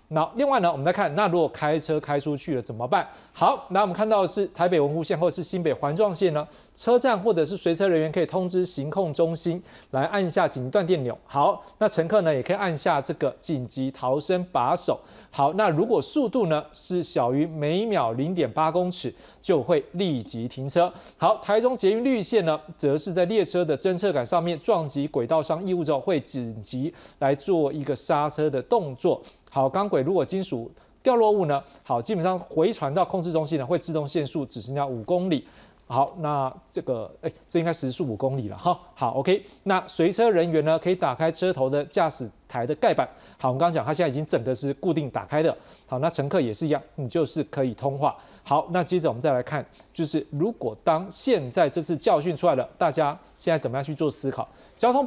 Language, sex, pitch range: Chinese, male, 140-185 Hz